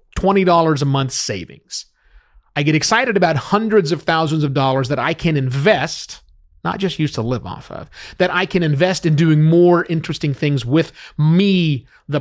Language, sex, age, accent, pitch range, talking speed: English, male, 30-49, American, 140-180 Hz, 170 wpm